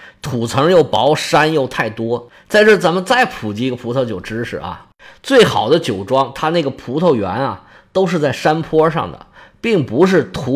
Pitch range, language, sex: 120-180 Hz, Chinese, male